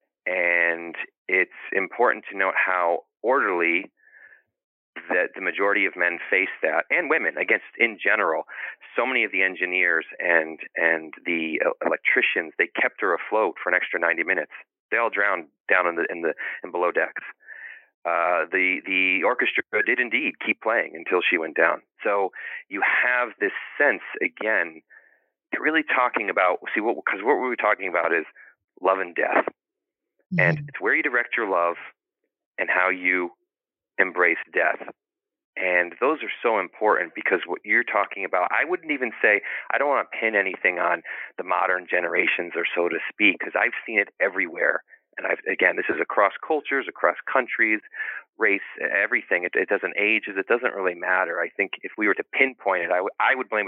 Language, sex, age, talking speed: English, male, 30-49, 180 wpm